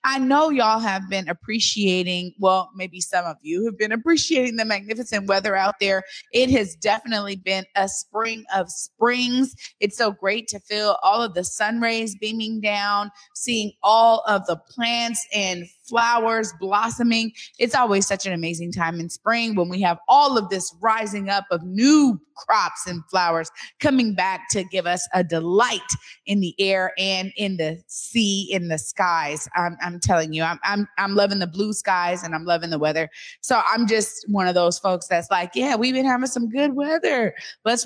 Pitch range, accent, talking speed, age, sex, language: 180-225 Hz, American, 185 wpm, 20-39, female, English